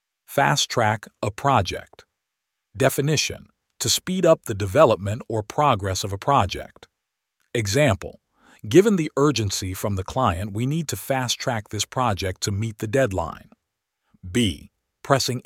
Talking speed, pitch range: 130 wpm, 105-135 Hz